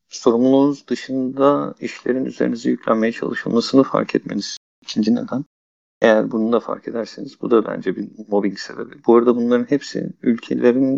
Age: 50-69